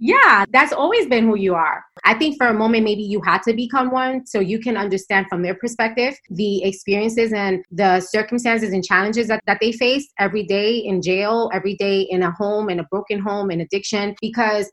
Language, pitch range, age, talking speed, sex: English, 190-235 Hz, 20-39, 210 wpm, female